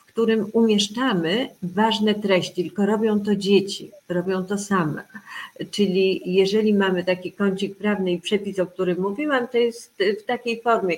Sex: female